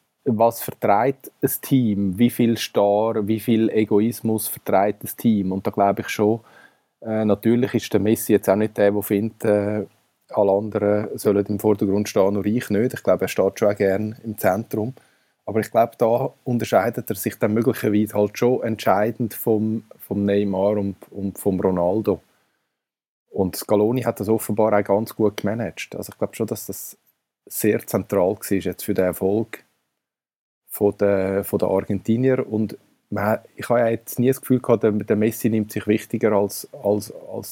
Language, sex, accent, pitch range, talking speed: German, male, Austrian, 100-115 Hz, 165 wpm